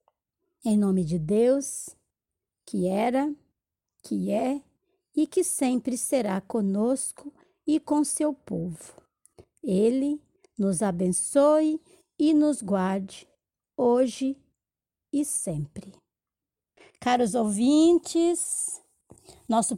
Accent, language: Brazilian, English